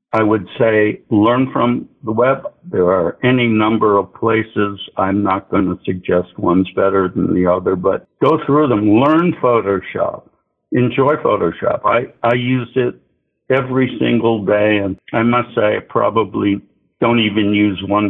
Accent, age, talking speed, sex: American, 60-79, 155 wpm, male